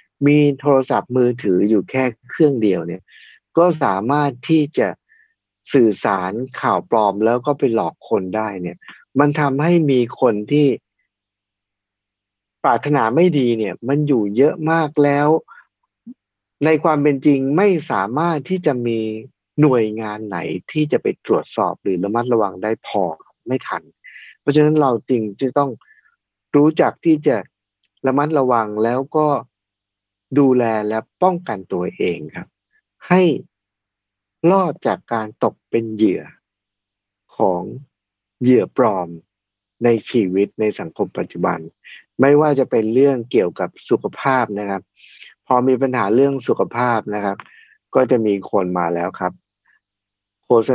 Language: Thai